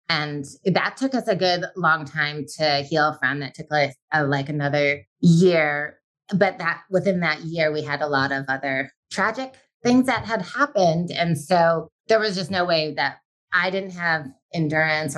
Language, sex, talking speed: English, female, 180 wpm